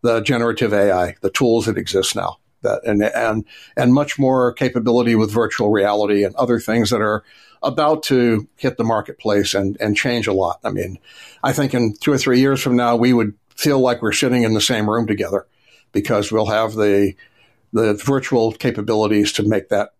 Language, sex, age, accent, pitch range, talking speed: English, male, 60-79, American, 110-130 Hz, 195 wpm